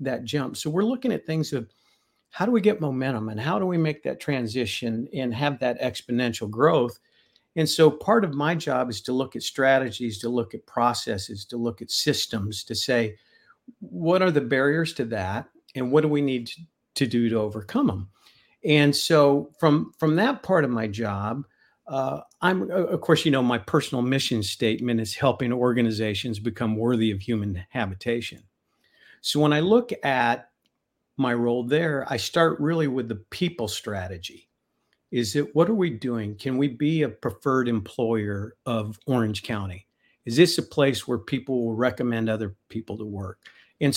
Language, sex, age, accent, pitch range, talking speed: English, male, 50-69, American, 115-150 Hz, 180 wpm